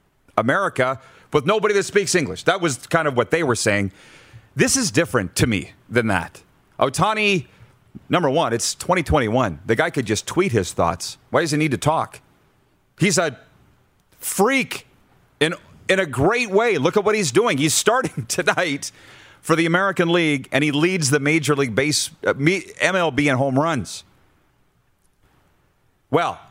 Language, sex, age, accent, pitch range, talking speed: English, male, 40-59, American, 110-150 Hz, 160 wpm